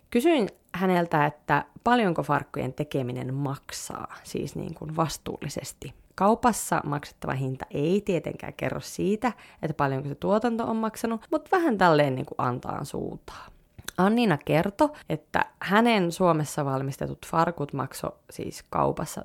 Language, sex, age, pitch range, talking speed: Finnish, female, 20-39, 145-190 Hz, 125 wpm